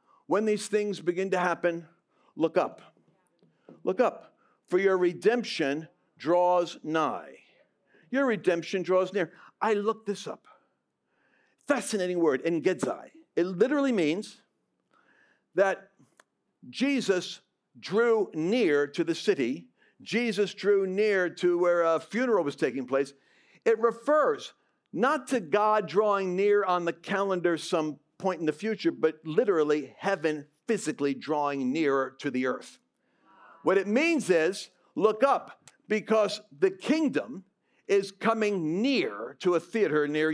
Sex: male